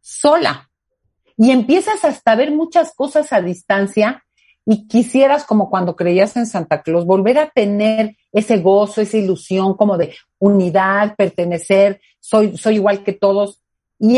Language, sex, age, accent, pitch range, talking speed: Spanish, female, 40-59, Mexican, 190-250 Hz, 145 wpm